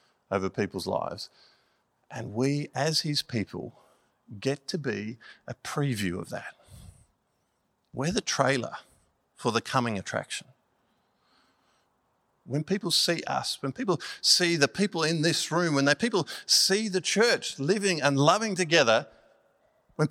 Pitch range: 115-160 Hz